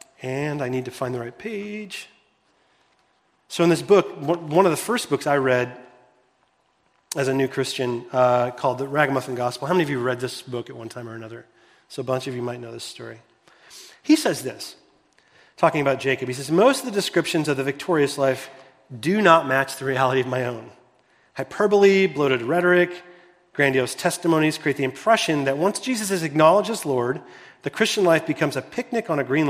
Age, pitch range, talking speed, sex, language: 30-49, 135-175 Hz, 195 wpm, male, English